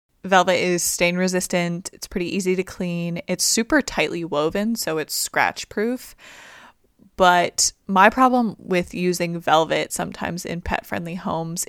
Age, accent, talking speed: 20-39, American, 130 wpm